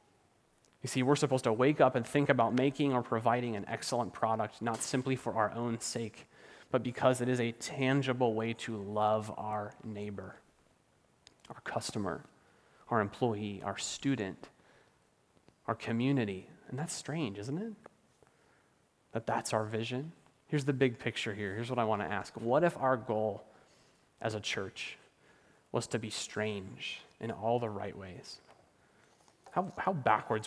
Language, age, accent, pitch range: English, 30-49, American, 110-145 Hz